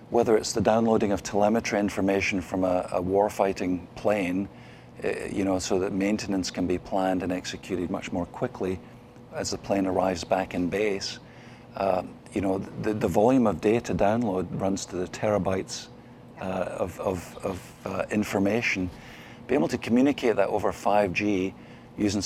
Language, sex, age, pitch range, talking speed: English, male, 50-69, 95-110 Hz, 160 wpm